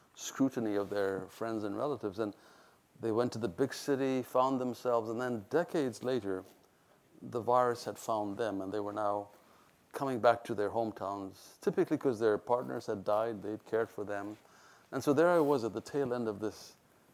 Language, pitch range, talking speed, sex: English, 105-125 Hz, 190 wpm, male